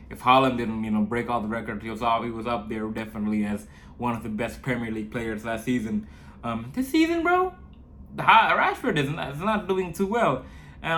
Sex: male